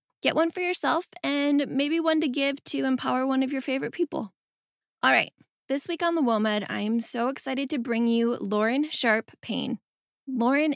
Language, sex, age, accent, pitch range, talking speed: English, female, 10-29, American, 215-270 Hz, 190 wpm